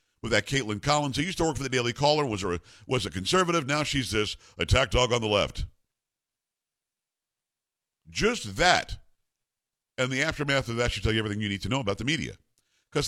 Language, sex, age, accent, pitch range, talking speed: English, male, 50-69, American, 100-145 Hz, 200 wpm